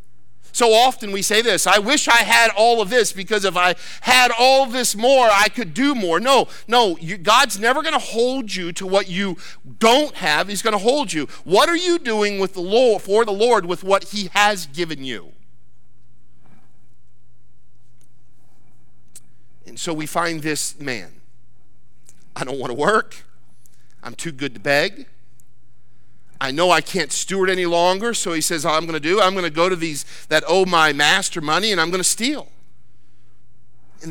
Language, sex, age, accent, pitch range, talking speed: English, male, 50-69, American, 140-210 Hz, 185 wpm